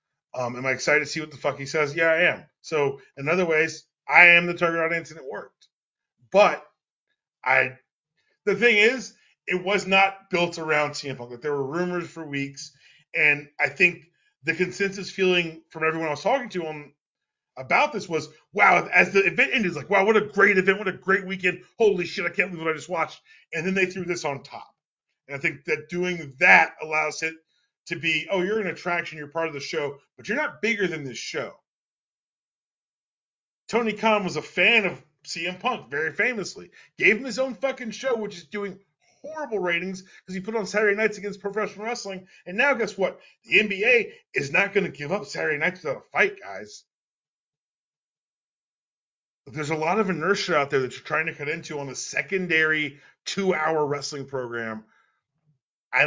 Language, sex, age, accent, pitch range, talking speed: English, male, 30-49, American, 155-200 Hz, 195 wpm